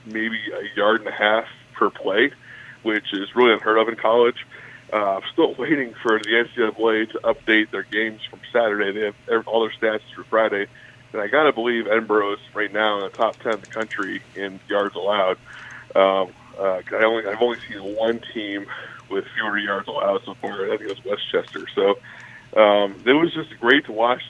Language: English